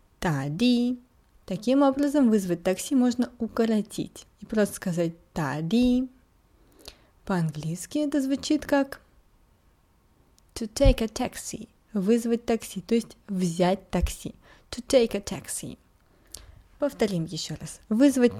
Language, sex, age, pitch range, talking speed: Russian, female, 20-39, 180-260 Hz, 110 wpm